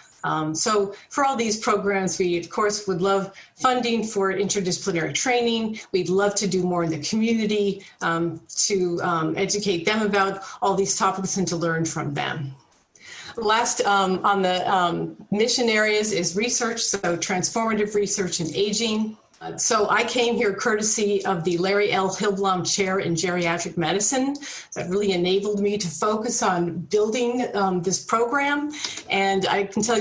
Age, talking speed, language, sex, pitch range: 40-59, 160 wpm, English, female, 185-215 Hz